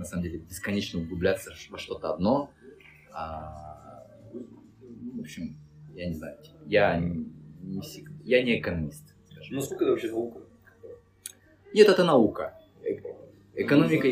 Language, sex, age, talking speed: Russian, male, 20-39, 125 wpm